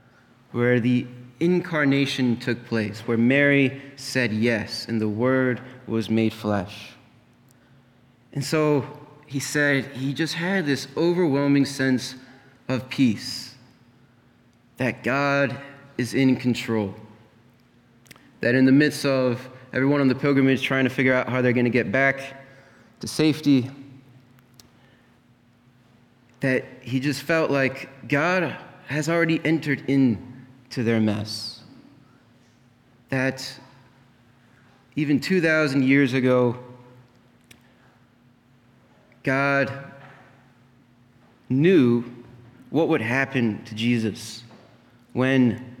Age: 20-39